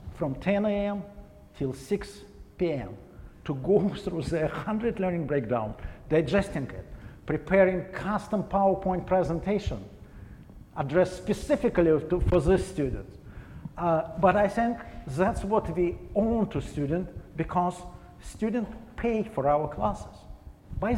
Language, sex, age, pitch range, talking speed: English, male, 50-69, 145-205 Hz, 120 wpm